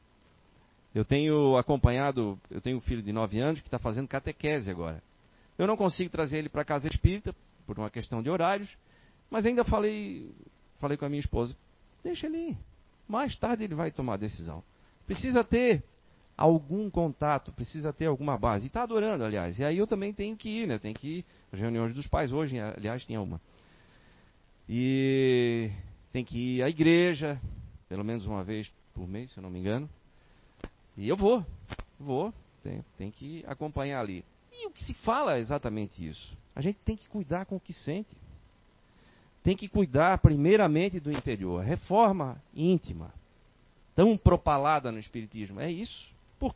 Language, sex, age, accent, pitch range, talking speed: Portuguese, male, 40-59, Brazilian, 110-175 Hz, 175 wpm